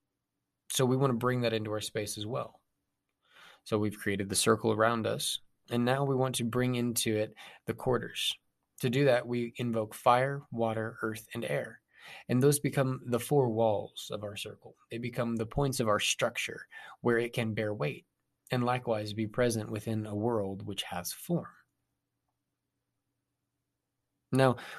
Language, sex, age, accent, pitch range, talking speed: English, male, 20-39, American, 110-130 Hz, 170 wpm